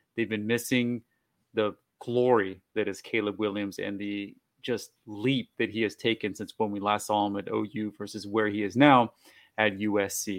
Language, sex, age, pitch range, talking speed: English, male, 30-49, 105-120 Hz, 185 wpm